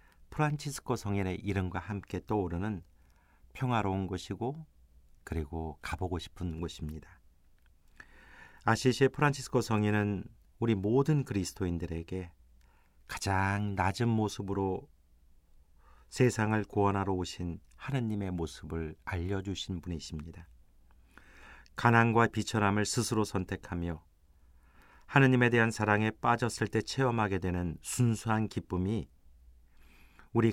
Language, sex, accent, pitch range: Korean, male, native, 75-110 Hz